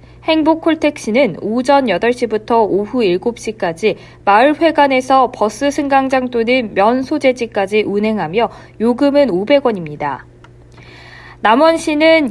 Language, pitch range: Korean, 195-280 Hz